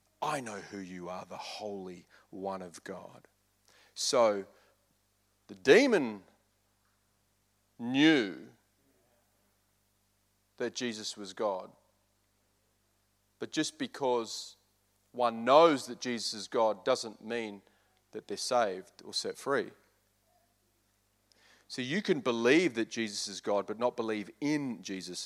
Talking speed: 115 wpm